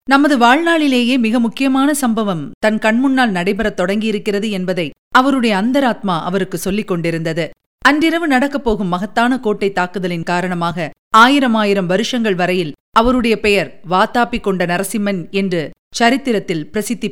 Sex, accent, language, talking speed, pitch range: female, native, Tamil, 120 wpm, 185-240 Hz